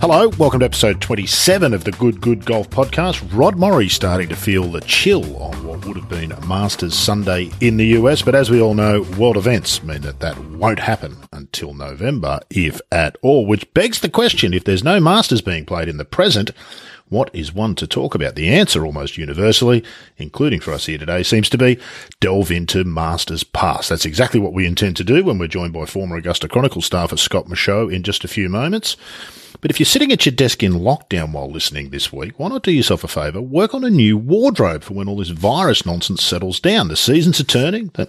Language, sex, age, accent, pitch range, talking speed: English, male, 50-69, Australian, 85-120 Hz, 220 wpm